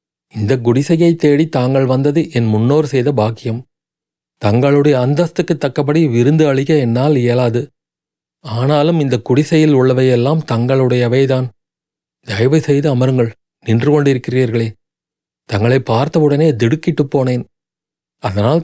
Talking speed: 100 wpm